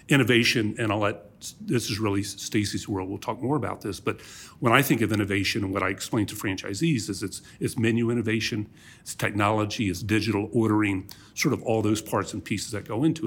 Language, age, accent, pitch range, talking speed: English, 40-59, American, 100-125 Hz, 210 wpm